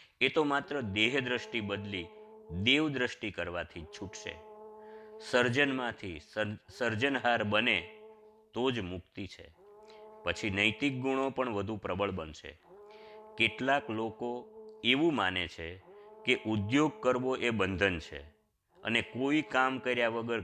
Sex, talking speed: male, 100 wpm